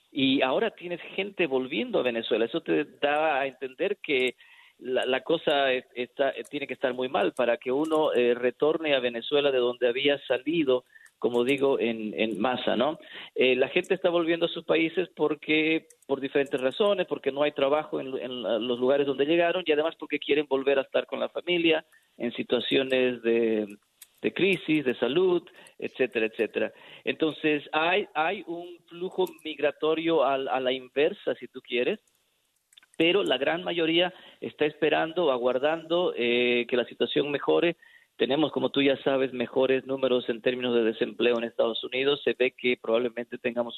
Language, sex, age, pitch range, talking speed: Spanish, male, 40-59, 125-165 Hz, 170 wpm